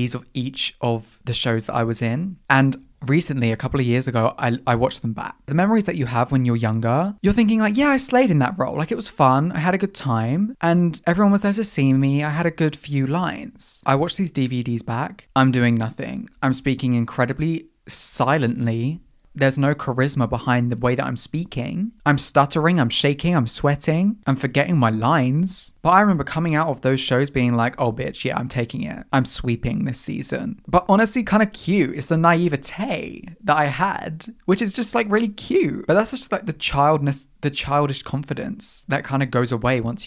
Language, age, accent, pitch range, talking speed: English, 20-39, British, 125-175 Hz, 215 wpm